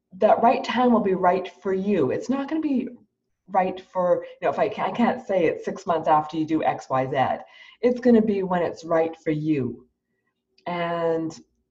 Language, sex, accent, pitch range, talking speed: English, female, American, 165-225 Hz, 215 wpm